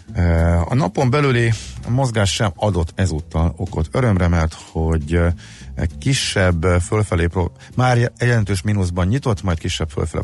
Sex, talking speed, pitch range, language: male, 125 wpm, 80-100 Hz, Hungarian